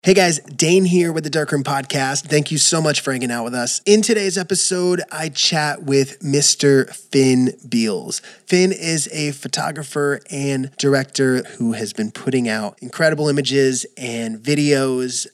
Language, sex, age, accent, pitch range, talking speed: English, male, 20-39, American, 125-145 Hz, 160 wpm